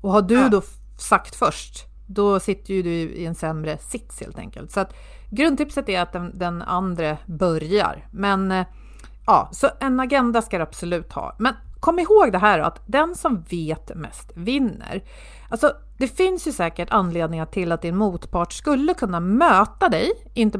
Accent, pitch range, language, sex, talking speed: native, 165-245 Hz, Swedish, female, 180 wpm